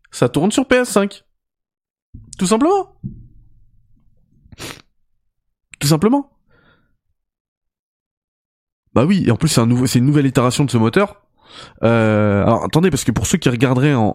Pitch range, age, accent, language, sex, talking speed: 115-160 Hz, 20-39, French, French, male, 140 wpm